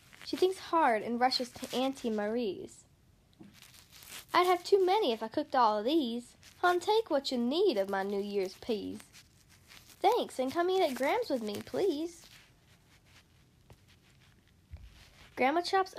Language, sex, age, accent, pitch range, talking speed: English, female, 10-29, American, 240-345 Hz, 150 wpm